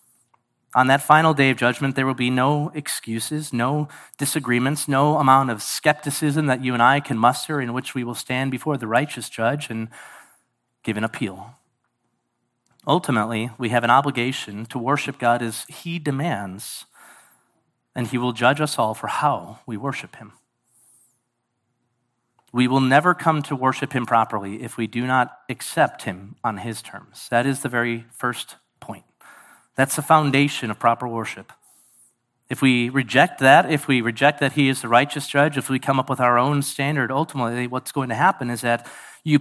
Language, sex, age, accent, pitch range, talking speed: English, male, 30-49, American, 120-145 Hz, 175 wpm